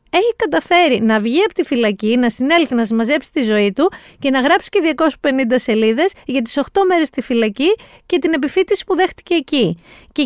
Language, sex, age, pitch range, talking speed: Greek, female, 30-49, 215-335 Hz, 195 wpm